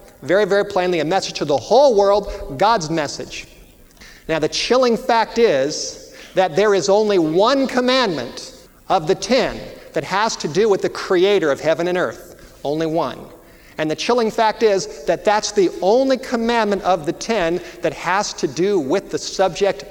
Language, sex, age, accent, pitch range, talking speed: English, male, 50-69, American, 170-230 Hz, 175 wpm